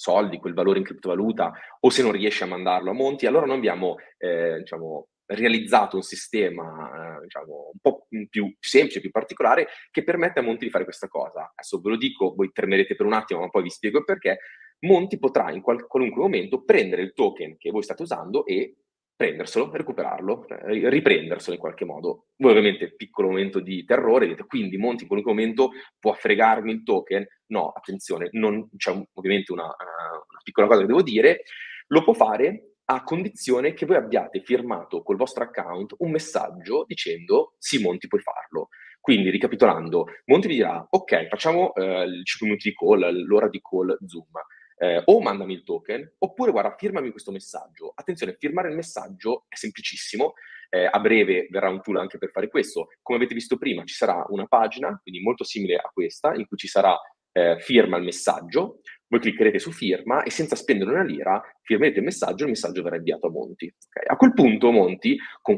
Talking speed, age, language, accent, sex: 190 wpm, 30-49, Italian, native, male